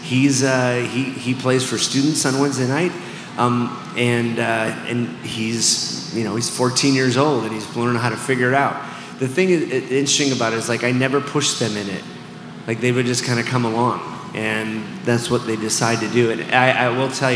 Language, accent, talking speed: English, American, 220 wpm